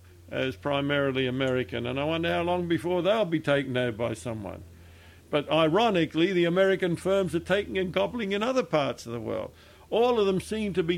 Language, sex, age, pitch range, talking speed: English, male, 60-79, 125-175 Hz, 195 wpm